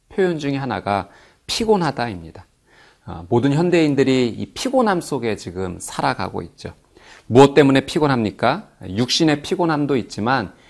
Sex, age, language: male, 40-59, Korean